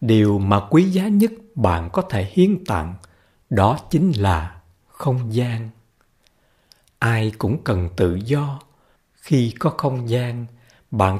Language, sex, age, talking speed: Vietnamese, male, 60-79, 135 wpm